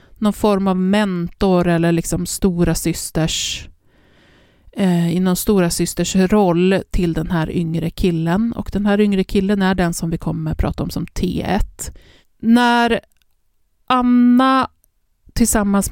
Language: Swedish